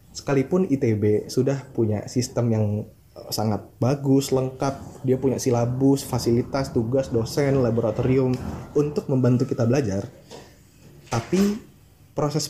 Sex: male